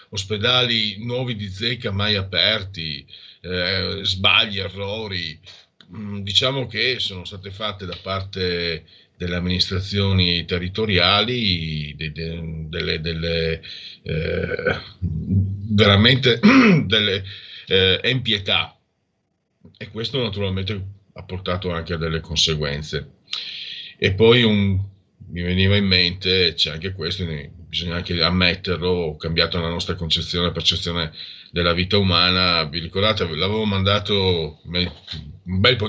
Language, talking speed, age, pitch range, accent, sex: Italian, 110 wpm, 50-69, 85-105 Hz, native, male